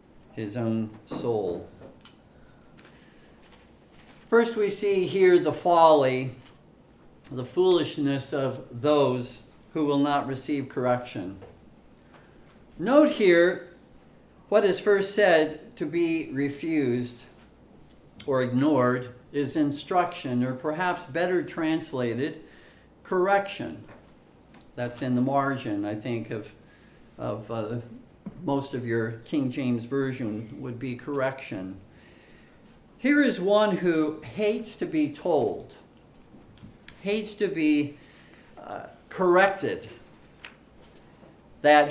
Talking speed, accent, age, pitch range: 100 wpm, American, 50-69, 130-200 Hz